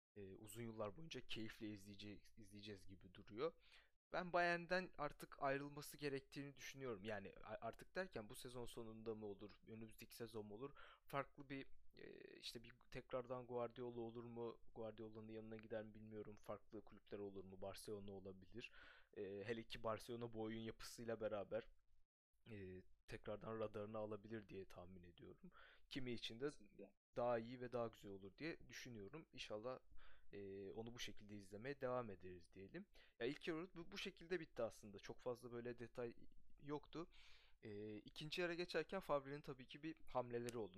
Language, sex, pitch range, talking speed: Turkish, male, 105-130 Hz, 145 wpm